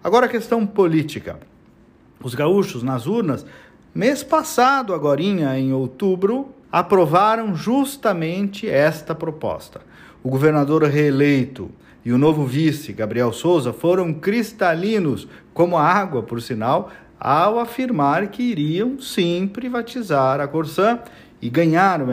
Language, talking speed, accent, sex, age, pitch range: Portuguese, 115 wpm, Brazilian, male, 50-69, 135-205 Hz